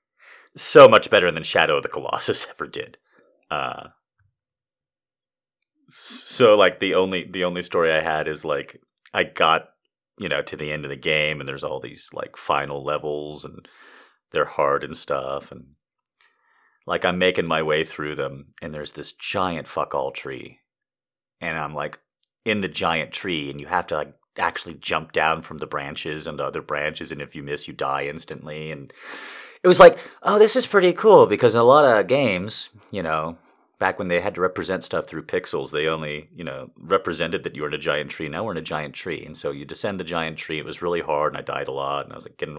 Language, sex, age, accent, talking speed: English, male, 30-49, American, 210 wpm